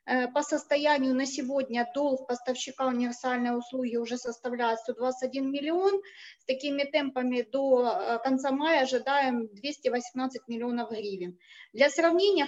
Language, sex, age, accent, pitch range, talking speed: Ukrainian, female, 20-39, native, 235-275 Hz, 115 wpm